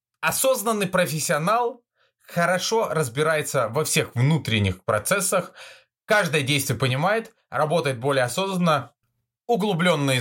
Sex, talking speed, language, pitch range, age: male, 90 wpm, Russian, 130-185 Hz, 20-39